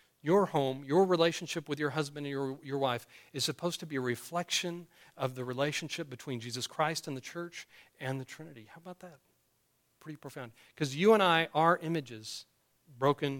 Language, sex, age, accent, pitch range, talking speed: English, male, 40-59, American, 130-180 Hz, 185 wpm